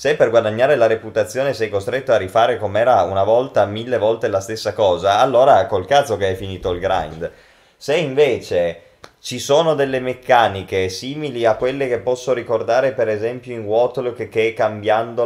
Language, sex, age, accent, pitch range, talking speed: Italian, male, 20-39, native, 110-145 Hz, 175 wpm